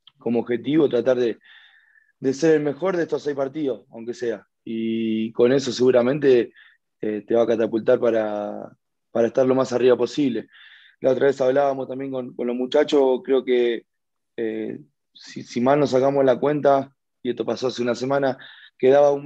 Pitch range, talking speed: 120-145 Hz, 180 wpm